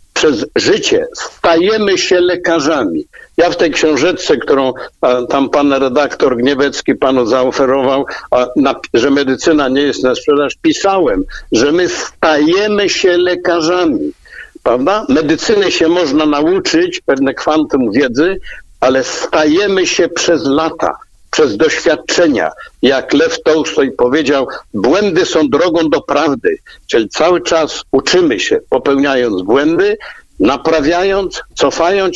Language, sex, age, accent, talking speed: Polish, male, 60-79, native, 120 wpm